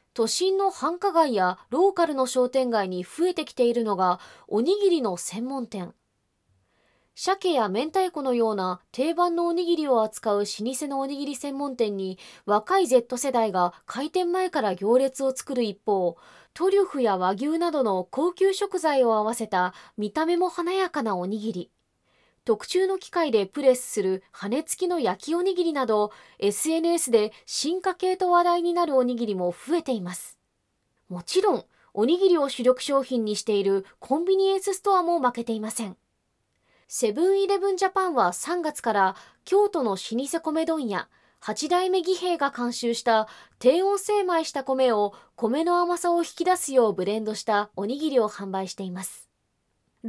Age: 20-39